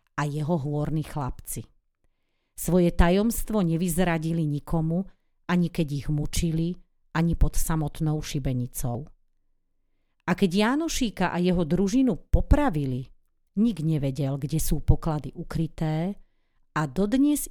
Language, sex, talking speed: Slovak, female, 105 wpm